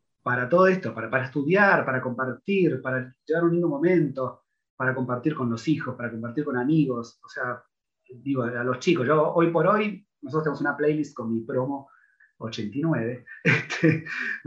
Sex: male